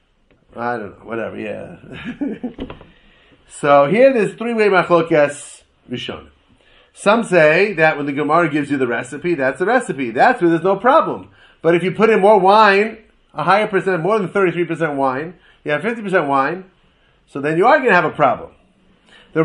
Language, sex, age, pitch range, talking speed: English, male, 30-49, 165-210 Hz, 175 wpm